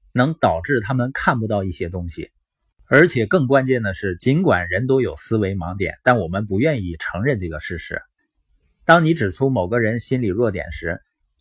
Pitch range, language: 100-140 Hz, Chinese